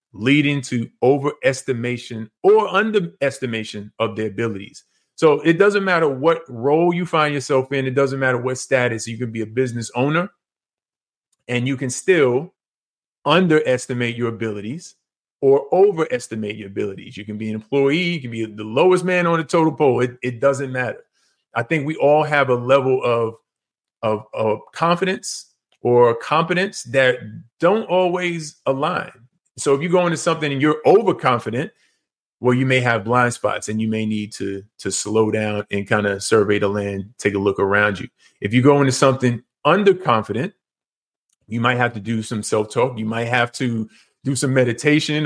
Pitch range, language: 115-150 Hz, English